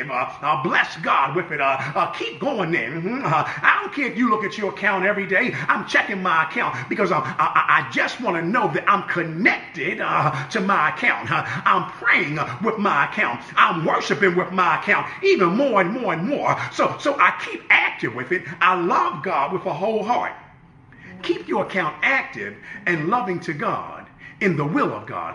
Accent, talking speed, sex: American, 200 wpm, male